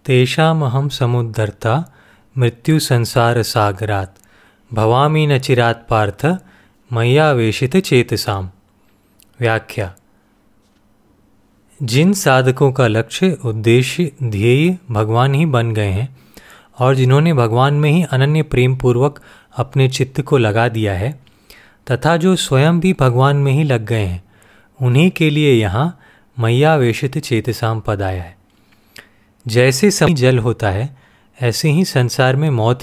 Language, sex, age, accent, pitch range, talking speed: Hindi, male, 30-49, native, 110-145 Hz, 120 wpm